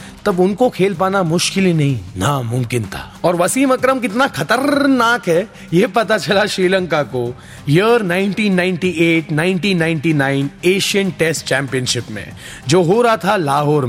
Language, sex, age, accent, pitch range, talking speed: Hindi, male, 30-49, native, 165-235 Hz, 120 wpm